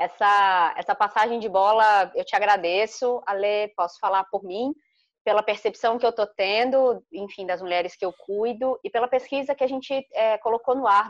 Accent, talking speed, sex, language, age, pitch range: Brazilian, 190 wpm, female, Portuguese, 20-39, 195-255 Hz